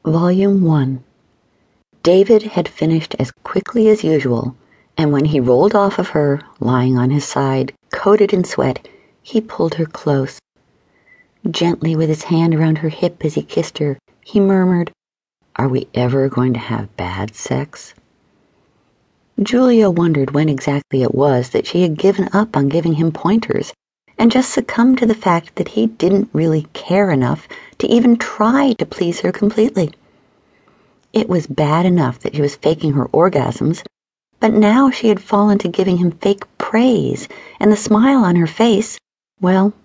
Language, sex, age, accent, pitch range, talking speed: English, female, 50-69, American, 150-210 Hz, 165 wpm